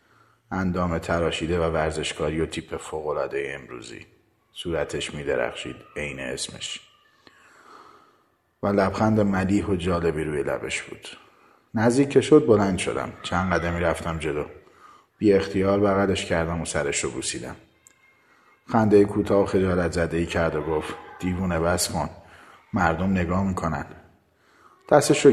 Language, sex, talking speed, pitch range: Persian, male, 125 wpm, 85-115 Hz